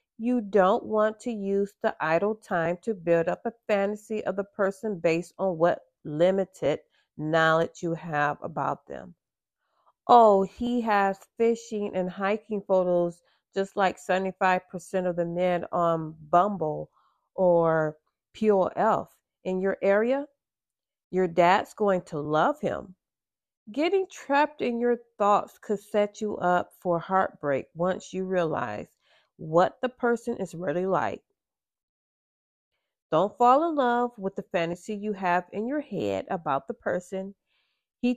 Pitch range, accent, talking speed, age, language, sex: 175-225 Hz, American, 140 wpm, 40-59, English, female